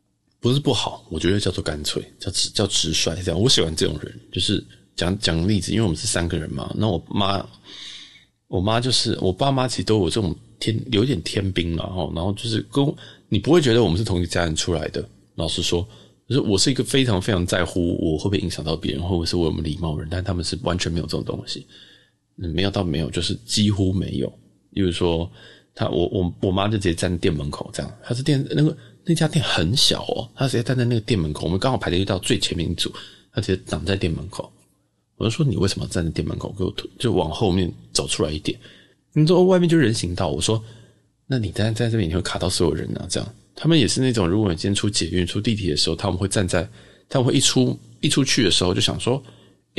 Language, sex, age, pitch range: Chinese, male, 20-39, 85-120 Hz